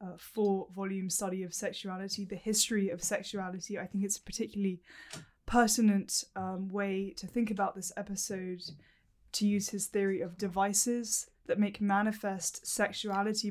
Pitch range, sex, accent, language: 185-205 Hz, female, British, English